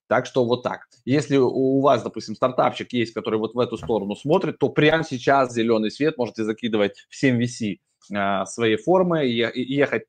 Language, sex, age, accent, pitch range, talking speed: Russian, male, 20-39, native, 105-130 Hz, 190 wpm